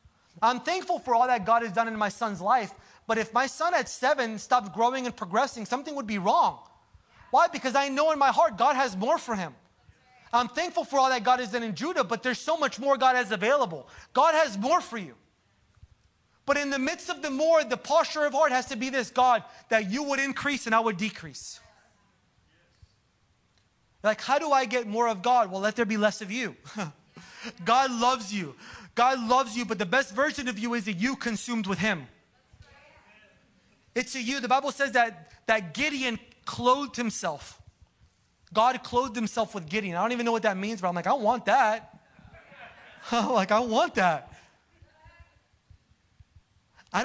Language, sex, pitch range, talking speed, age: English, male, 205-265 Hz, 195 wpm, 30-49